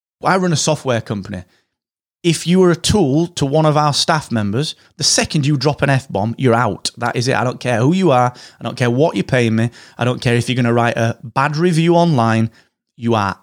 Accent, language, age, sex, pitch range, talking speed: British, English, 30-49, male, 115-150 Hz, 240 wpm